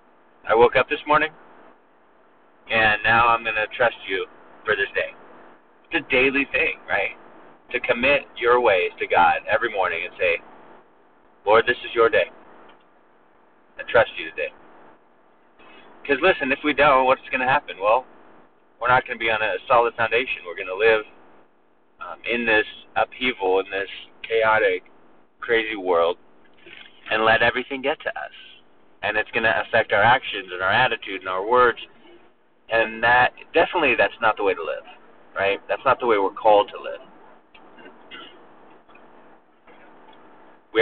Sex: male